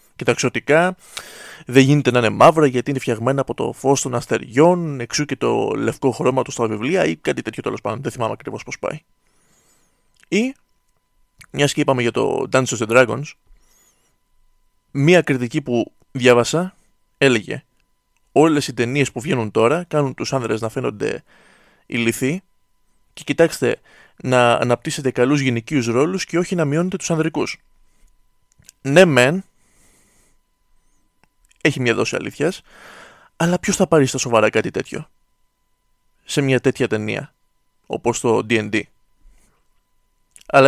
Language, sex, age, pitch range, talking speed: Greek, male, 20-39, 120-150 Hz, 140 wpm